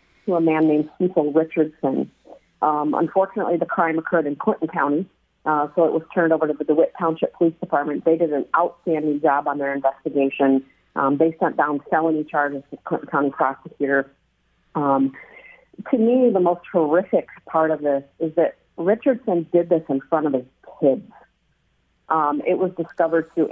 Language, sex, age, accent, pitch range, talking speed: English, female, 40-59, American, 140-170 Hz, 175 wpm